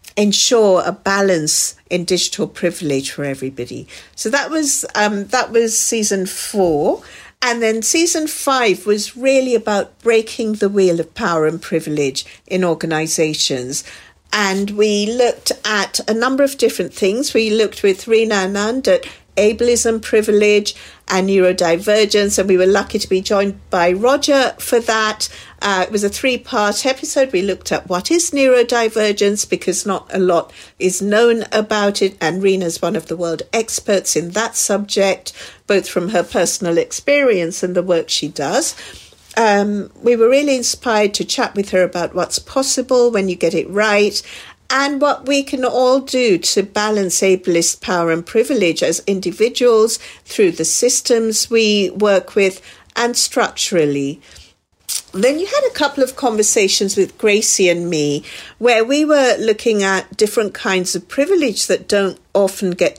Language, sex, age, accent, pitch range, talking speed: English, female, 50-69, British, 180-235 Hz, 155 wpm